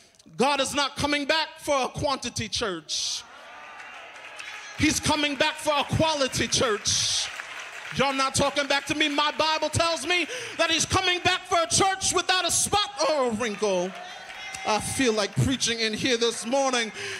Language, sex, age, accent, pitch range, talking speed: English, male, 30-49, American, 205-290 Hz, 165 wpm